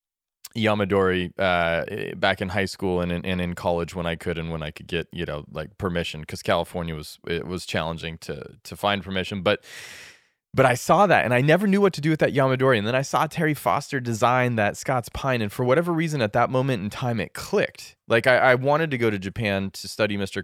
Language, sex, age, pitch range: English, male, 20-39, 90-130 Hz